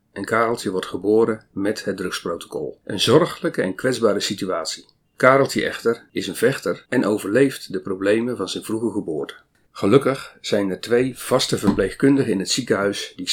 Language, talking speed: Dutch, 160 wpm